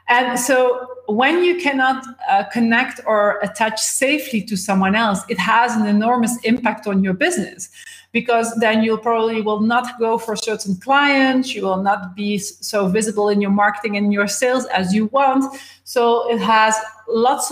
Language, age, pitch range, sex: Dutch, 40-59, 205-245 Hz, female